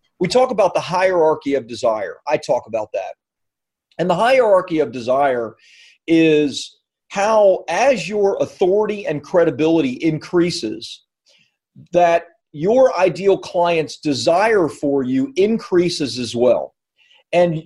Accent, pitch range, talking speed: American, 145-185 Hz, 120 wpm